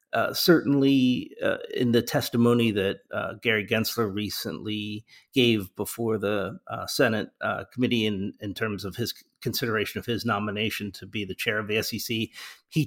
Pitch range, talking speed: 95-120 Hz, 165 wpm